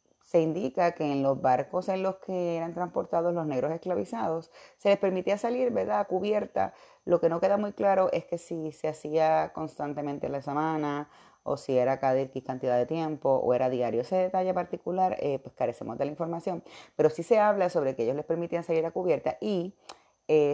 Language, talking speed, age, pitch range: Spanish, 200 wpm, 30-49, 140-185 Hz